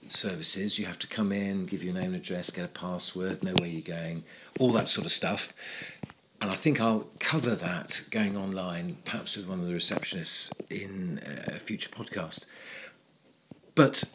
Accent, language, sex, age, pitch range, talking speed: British, English, male, 50-69, 95-115 Hz, 180 wpm